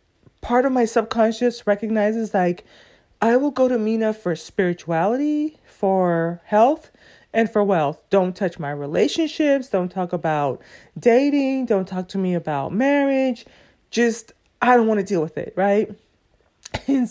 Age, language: 30-49, English